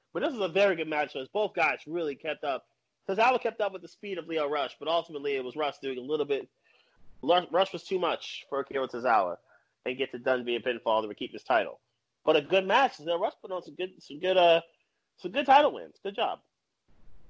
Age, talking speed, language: 30-49, 235 wpm, English